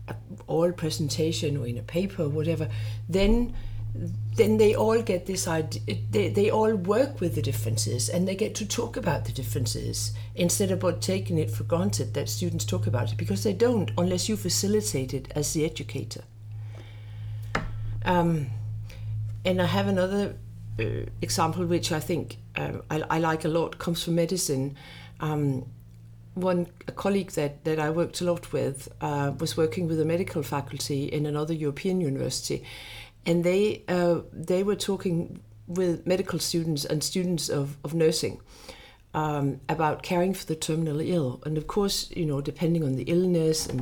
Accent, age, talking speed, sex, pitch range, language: native, 60-79, 170 wpm, female, 110-170 Hz, Danish